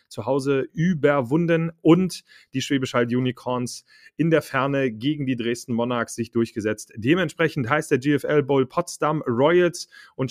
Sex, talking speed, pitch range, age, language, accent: male, 135 wpm, 125-160 Hz, 30-49, German, German